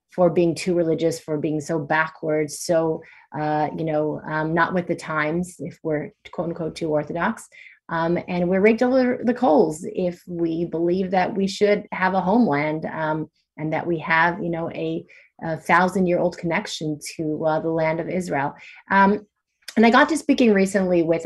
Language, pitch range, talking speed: English, 160-195 Hz, 185 wpm